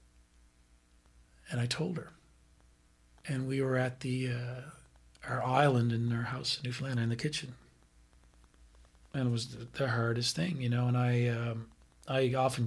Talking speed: 160 wpm